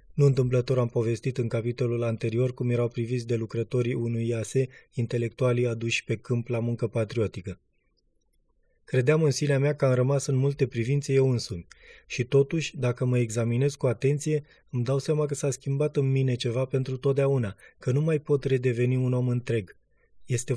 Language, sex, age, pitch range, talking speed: Romanian, male, 20-39, 120-140 Hz, 175 wpm